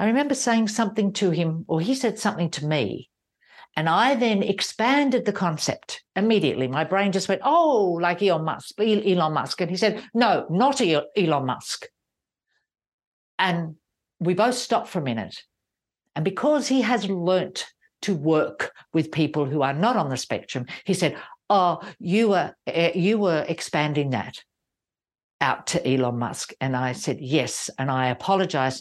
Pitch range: 140-200 Hz